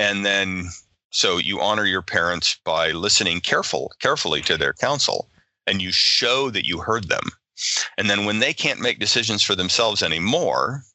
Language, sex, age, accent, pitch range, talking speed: English, male, 40-59, American, 90-110 Hz, 170 wpm